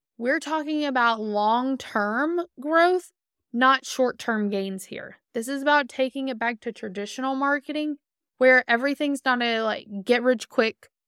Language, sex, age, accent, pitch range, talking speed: English, female, 20-39, American, 215-265 Hz, 150 wpm